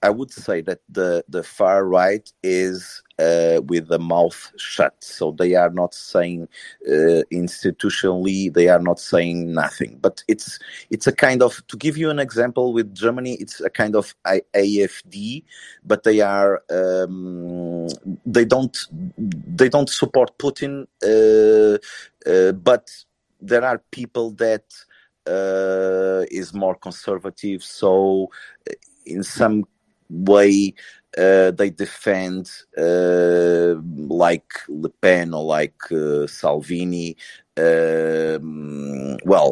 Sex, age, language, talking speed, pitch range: male, 30-49, English, 125 wpm, 85-115 Hz